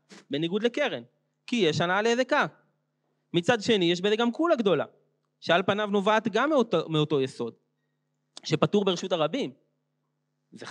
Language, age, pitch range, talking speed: Hebrew, 30-49, 150-205 Hz, 135 wpm